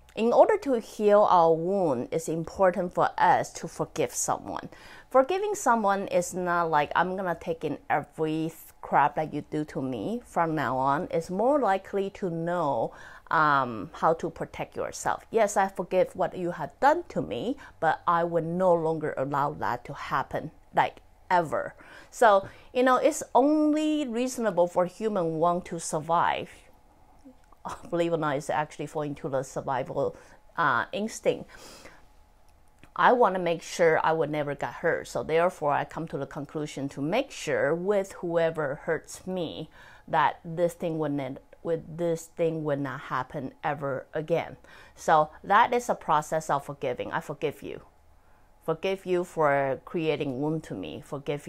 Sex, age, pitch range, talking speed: female, 30-49, 145-185 Hz, 165 wpm